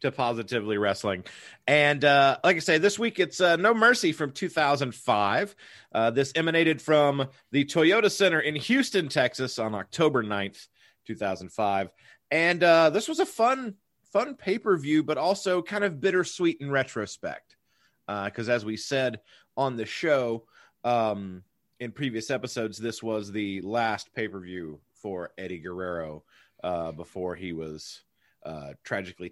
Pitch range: 110-170 Hz